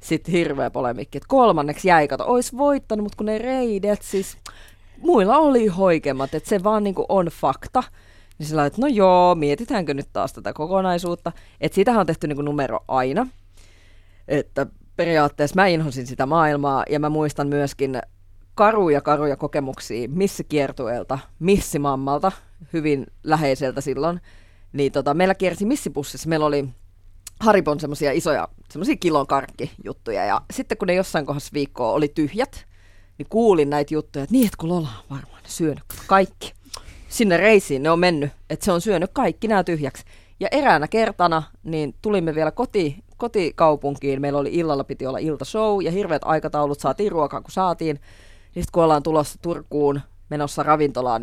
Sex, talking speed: female, 150 wpm